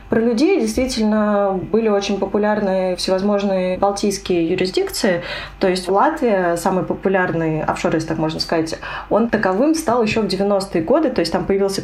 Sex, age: female, 20-39